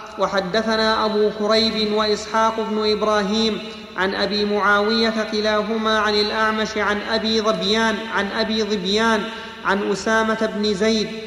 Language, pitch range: Arabic, 215-225 Hz